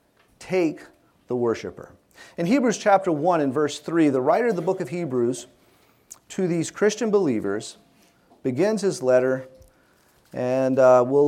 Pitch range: 145-210 Hz